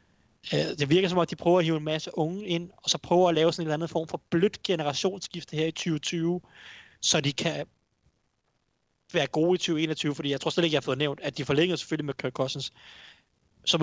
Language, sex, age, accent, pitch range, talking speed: Danish, male, 30-49, native, 135-165 Hz, 230 wpm